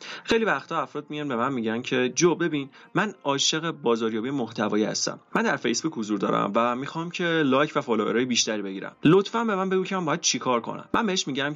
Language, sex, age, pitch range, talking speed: Persian, male, 30-49, 120-175 Hz, 215 wpm